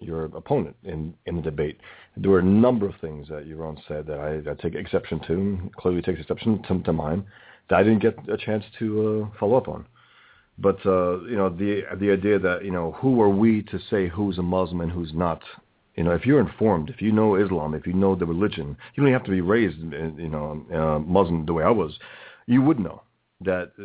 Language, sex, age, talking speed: English, male, 40-59, 235 wpm